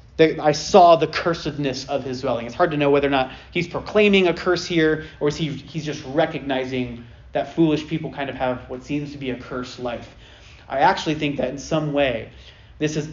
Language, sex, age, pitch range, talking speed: English, male, 30-49, 125-155 Hz, 220 wpm